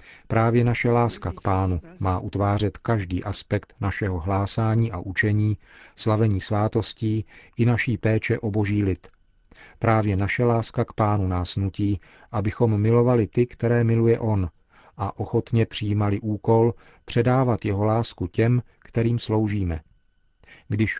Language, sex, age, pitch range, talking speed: Czech, male, 40-59, 100-115 Hz, 130 wpm